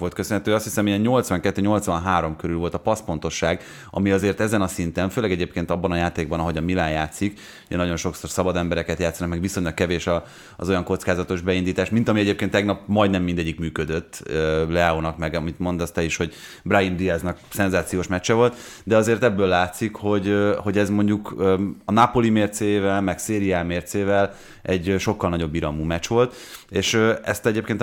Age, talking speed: 30-49, 170 wpm